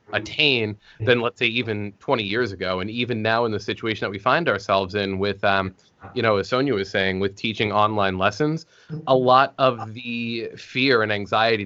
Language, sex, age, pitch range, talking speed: English, male, 20-39, 105-130 Hz, 195 wpm